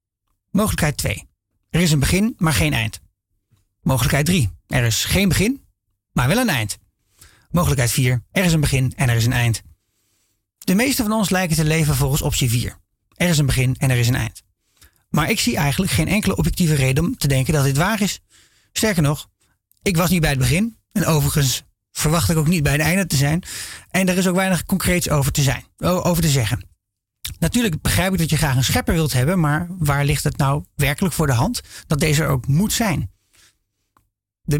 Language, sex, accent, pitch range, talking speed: Dutch, male, Dutch, 115-170 Hz, 205 wpm